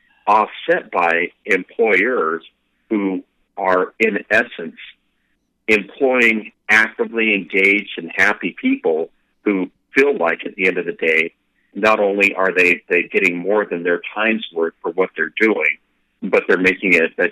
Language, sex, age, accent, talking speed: English, male, 50-69, American, 140 wpm